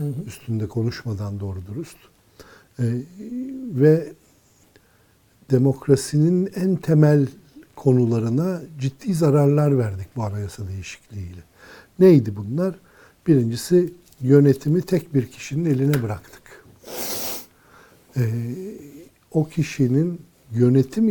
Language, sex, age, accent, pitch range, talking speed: Turkish, male, 60-79, native, 110-155 Hz, 80 wpm